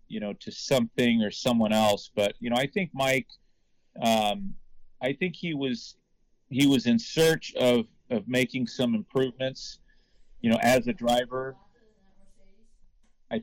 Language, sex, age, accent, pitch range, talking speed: English, male, 40-59, American, 115-145 Hz, 150 wpm